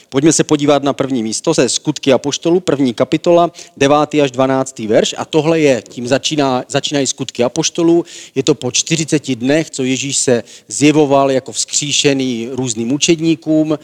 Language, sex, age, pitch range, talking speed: Czech, male, 40-59, 120-155 Hz, 155 wpm